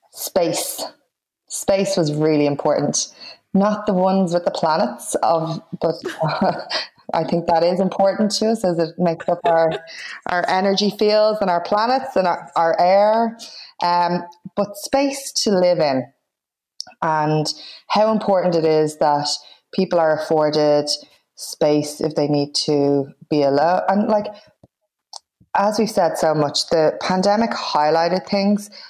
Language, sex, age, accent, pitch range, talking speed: English, female, 20-39, Irish, 155-195 Hz, 145 wpm